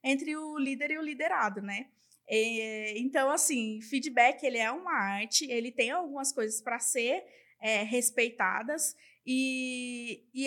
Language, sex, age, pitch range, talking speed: Portuguese, female, 20-39, 235-305 Hz, 130 wpm